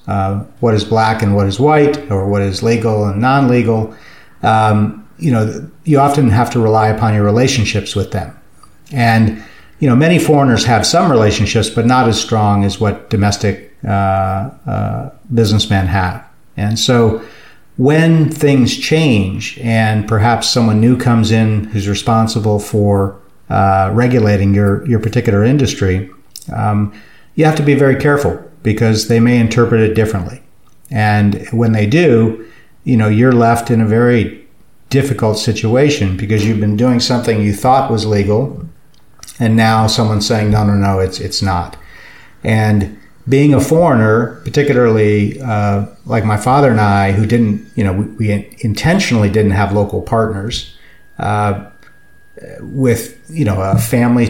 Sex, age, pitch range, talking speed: male, 50-69, 105-120 Hz, 155 wpm